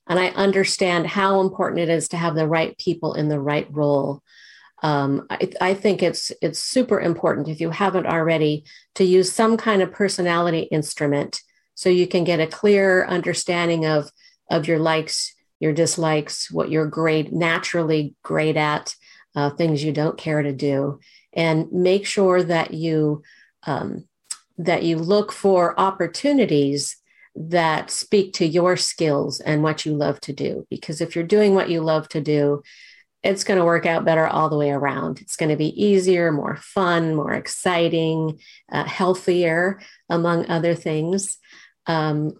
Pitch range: 155-185 Hz